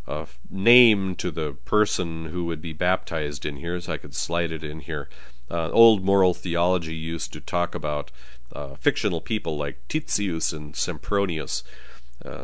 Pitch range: 80-105 Hz